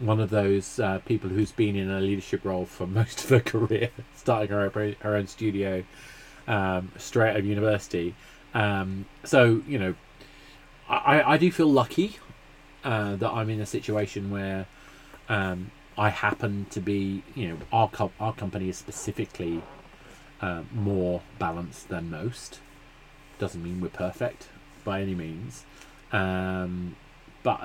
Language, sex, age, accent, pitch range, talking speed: English, male, 30-49, British, 100-135 Hz, 150 wpm